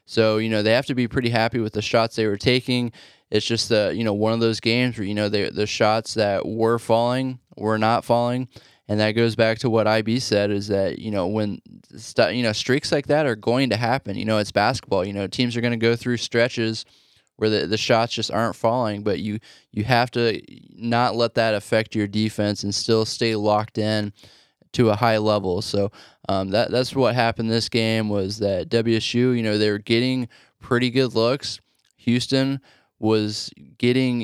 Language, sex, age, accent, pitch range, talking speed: English, male, 20-39, American, 110-120 Hz, 215 wpm